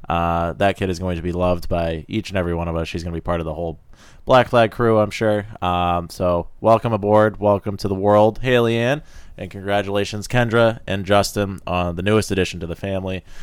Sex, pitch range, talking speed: male, 90-115 Hz, 230 wpm